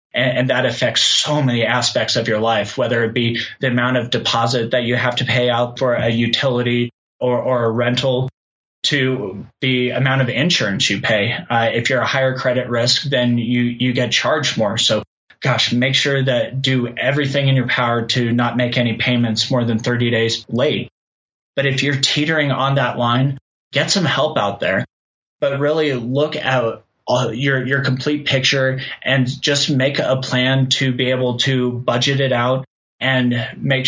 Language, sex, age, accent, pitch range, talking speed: English, male, 20-39, American, 120-135 Hz, 180 wpm